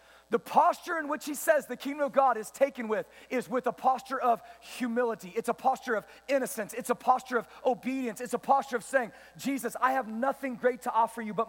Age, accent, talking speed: 40-59, American, 225 wpm